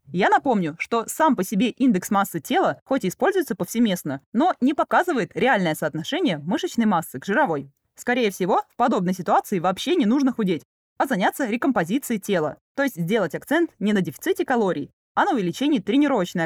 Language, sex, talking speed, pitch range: Russian, female, 170 wpm, 180-275 Hz